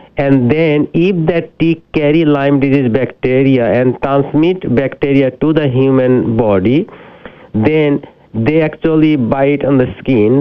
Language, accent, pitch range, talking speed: English, Indian, 125-150 Hz, 135 wpm